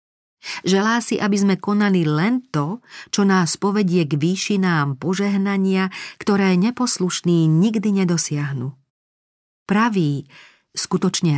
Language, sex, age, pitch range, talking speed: Slovak, female, 40-59, 155-195 Hz, 100 wpm